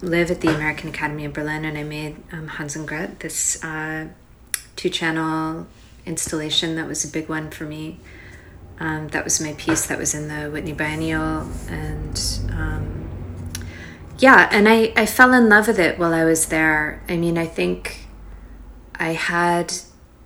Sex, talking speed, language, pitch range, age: female, 170 wpm, English, 150-170 Hz, 30-49